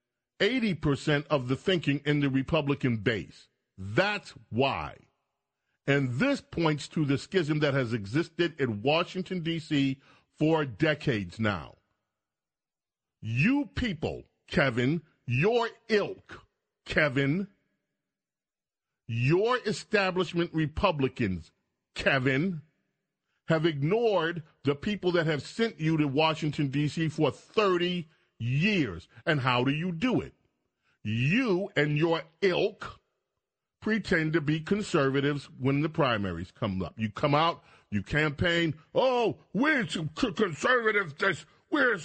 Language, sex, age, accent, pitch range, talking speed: English, male, 40-59, American, 140-185 Hz, 110 wpm